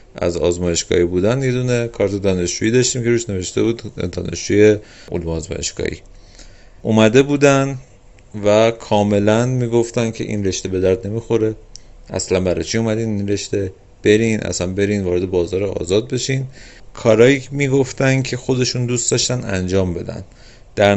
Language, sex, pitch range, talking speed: Persian, male, 90-115 Hz, 135 wpm